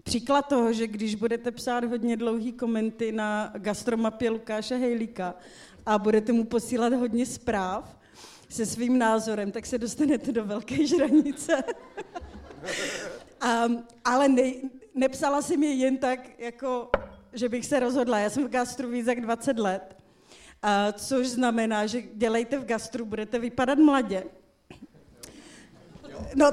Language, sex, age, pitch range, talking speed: Czech, female, 30-49, 210-255 Hz, 135 wpm